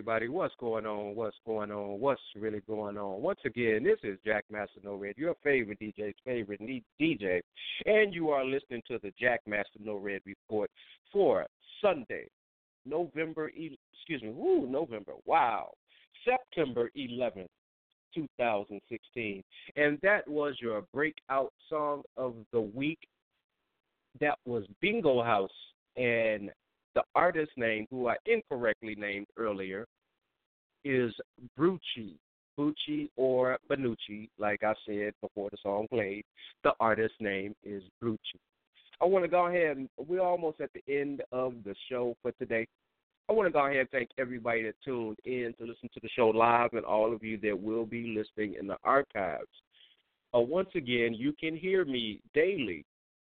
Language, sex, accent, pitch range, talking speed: English, male, American, 105-145 Hz, 150 wpm